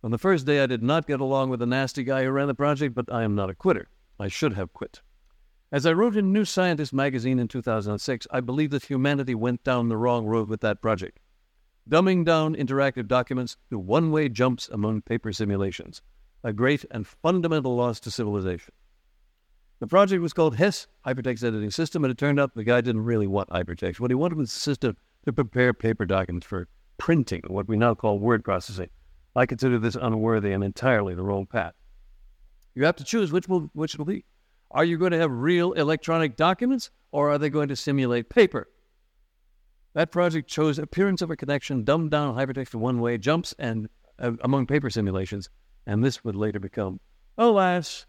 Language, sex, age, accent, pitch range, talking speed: English, male, 60-79, American, 105-150 Hz, 195 wpm